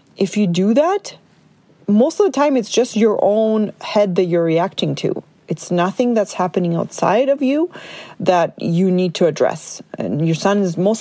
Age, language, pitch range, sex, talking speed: 30-49, English, 175-220 Hz, female, 185 wpm